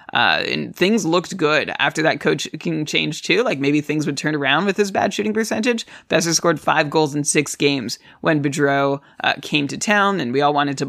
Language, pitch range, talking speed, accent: English, 145-190 Hz, 215 wpm, American